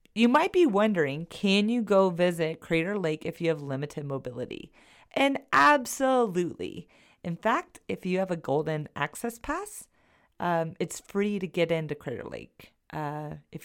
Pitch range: 160-235 Hz